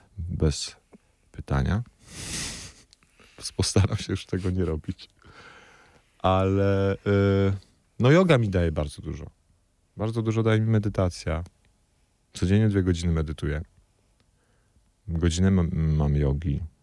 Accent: native